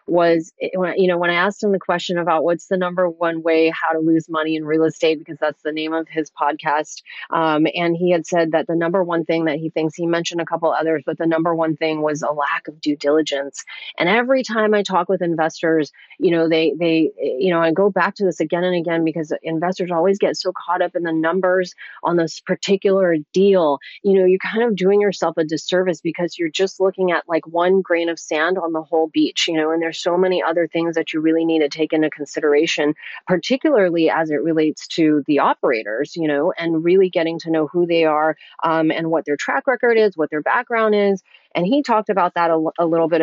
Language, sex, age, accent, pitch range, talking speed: English, female, 30-49, American, 160-185 Hz, 235 wpm